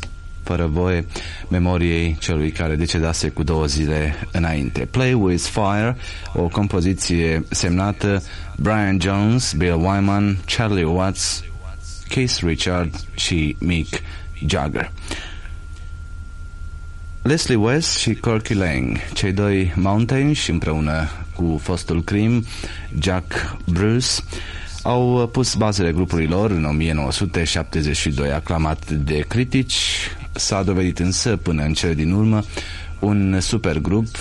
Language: Romanian